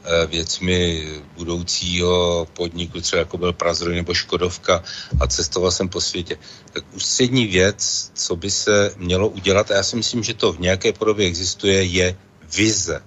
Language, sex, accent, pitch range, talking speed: Czech, male, native, 90-115 Hz, 155 wpm